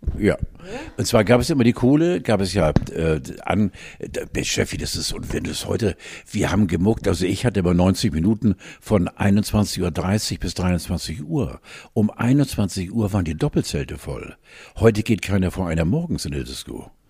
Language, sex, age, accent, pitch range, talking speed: German, male, 60-79, German, 85-115 Hz, 175 wpm